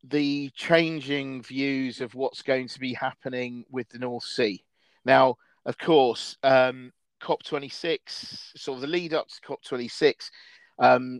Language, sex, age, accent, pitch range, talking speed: English, male, 40-59, British, 125-150 Hz, 160 wpm